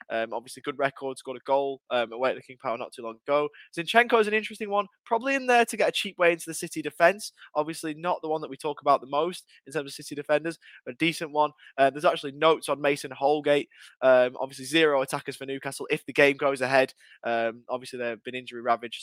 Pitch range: 125-155 Hz